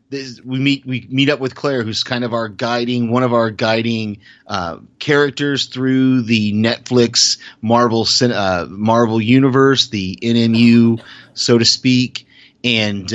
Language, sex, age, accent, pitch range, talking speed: English, male, 30-49, American, 100-125 Hz, 150 wpm